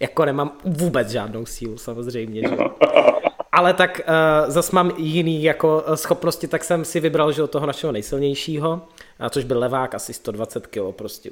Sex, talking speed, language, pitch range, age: male, 165 wpm, Czech, 130-165 Hz, 20-39